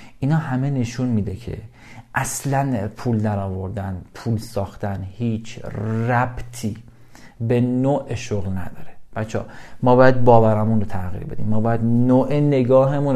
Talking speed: 130 wpm